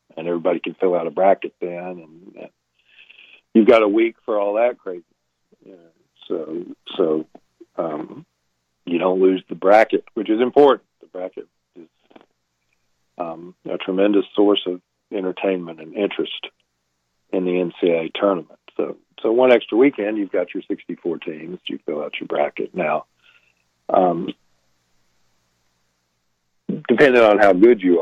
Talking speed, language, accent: 140 wpm, English, American